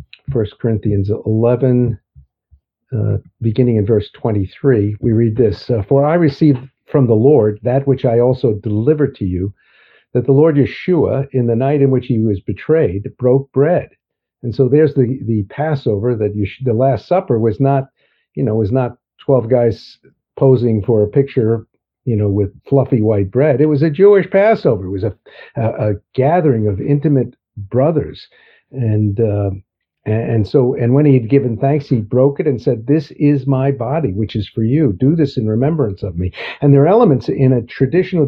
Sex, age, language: male, 50-69, English